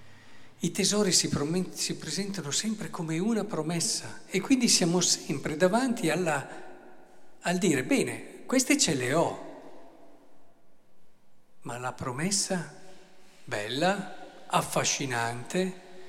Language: Italian